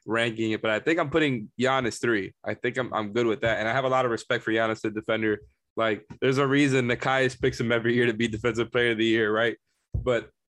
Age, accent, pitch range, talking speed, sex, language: 20-39, American, 110-130 Hz, 255 wpm, male, English